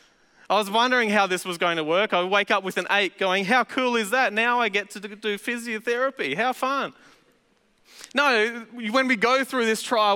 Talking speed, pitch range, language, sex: 205 wpm, 200-245 Hz, English, male